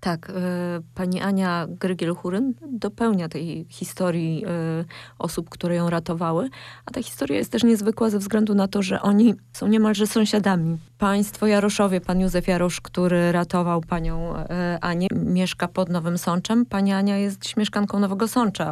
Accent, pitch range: native, 170-200 Hz